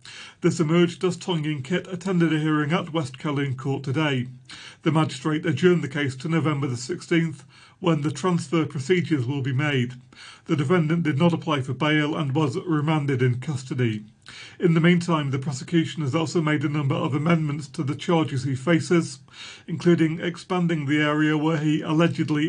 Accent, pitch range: British, 145-170 Hz